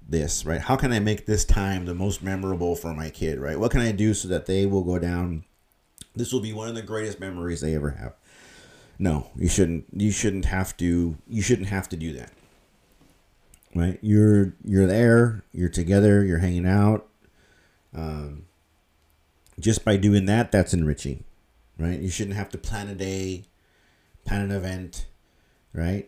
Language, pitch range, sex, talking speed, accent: English, 85-105 Hz, male, 175 wpm, American